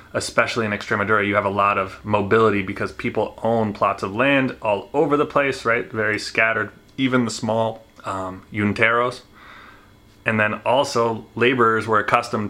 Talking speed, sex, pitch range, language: 160 wpm, male, 100-115 Hz, English